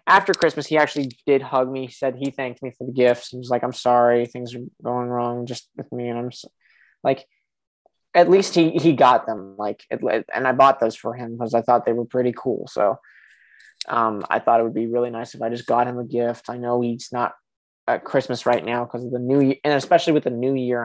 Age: 20-39